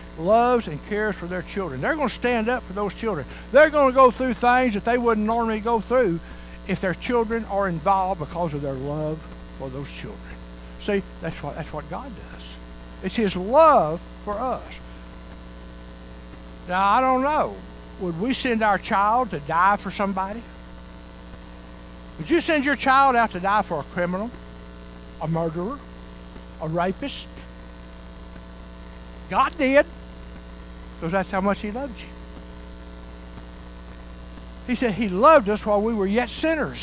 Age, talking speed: 60-79, 155 wpm